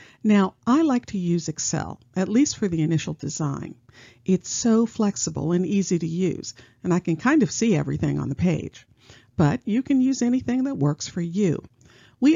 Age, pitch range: 50-69, 150-205 Hz